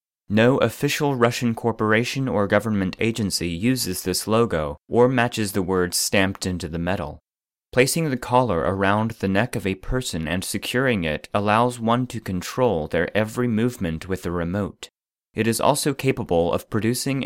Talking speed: 160 wpm